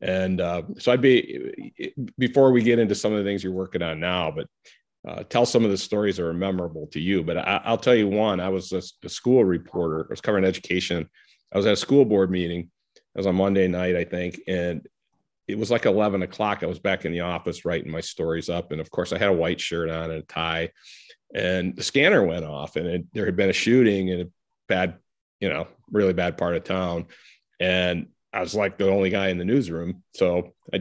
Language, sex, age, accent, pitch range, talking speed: English, male, 40-59, American, 90-105 Hz, 230 wpm